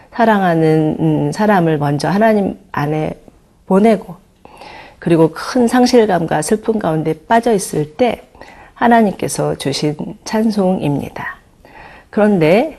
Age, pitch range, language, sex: 40-59, 160-220 Hz, Korean, female